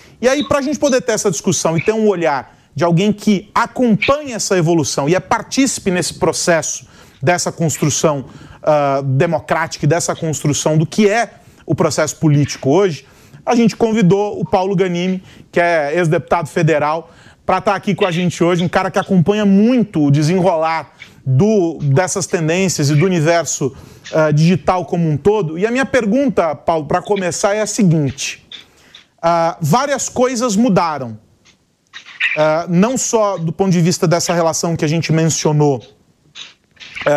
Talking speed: 160 wpm